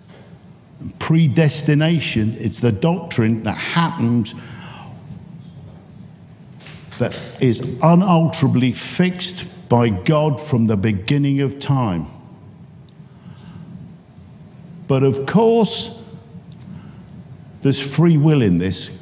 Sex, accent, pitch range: male, British, 110-155 Hz